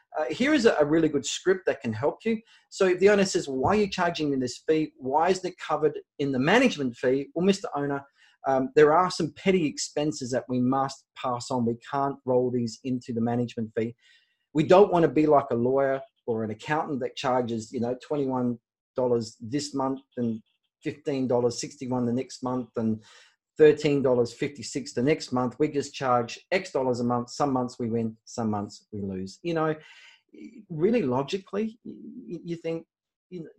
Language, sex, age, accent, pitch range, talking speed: English, male, 30-49, Australian, 120-165 Hz, 185 wpm